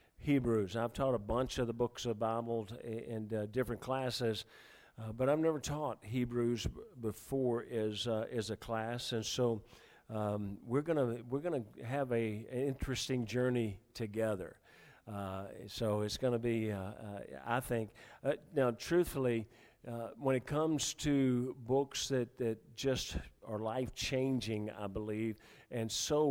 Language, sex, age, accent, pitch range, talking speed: English, male, 50-69, American, 110-135 Hz, 155 wpm